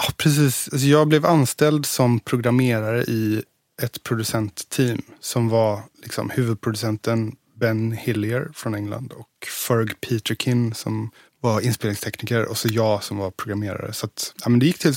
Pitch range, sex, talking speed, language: 105-125 Hz, male, 130 wpm, English